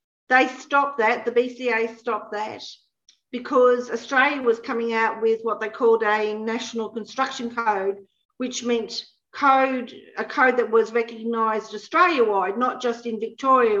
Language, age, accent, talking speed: English, 40-59, Australian, 150 wpm